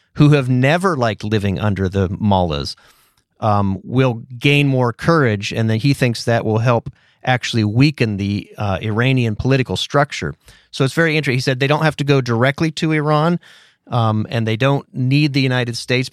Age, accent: 30-49, American